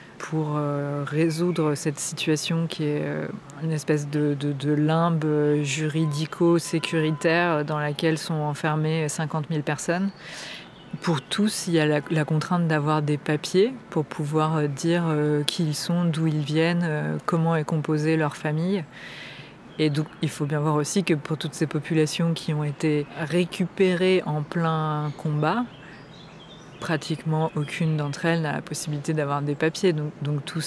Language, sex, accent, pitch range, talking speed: French, female, French, 150-165 Hz, 150 wpm